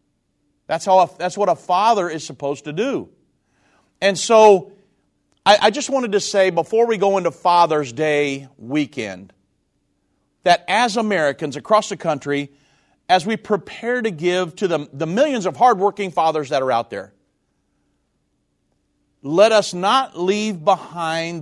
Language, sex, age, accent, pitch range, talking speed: English, male, 50-69, American, 150-200 Hz, 145 wpm